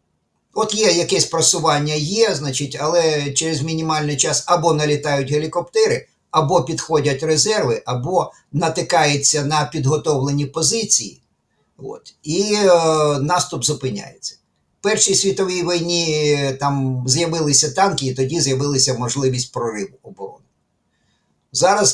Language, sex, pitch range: Ukrainian, male, 135-165 Hz